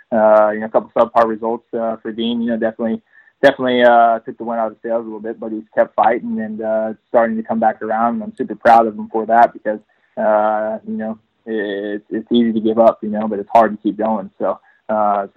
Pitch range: 110-115 Hz